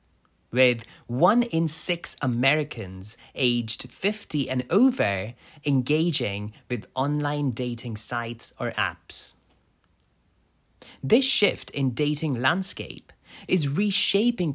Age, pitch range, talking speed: 20-39, 110-160 Hz, 95 wpm